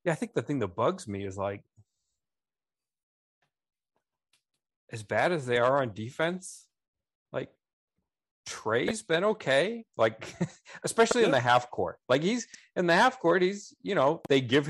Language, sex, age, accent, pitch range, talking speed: English, male, 40-59, American, 100-150 Hz, 155 wpm